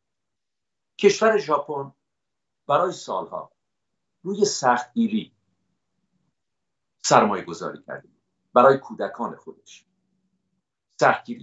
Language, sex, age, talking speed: English, male, 50-69, 75 wpm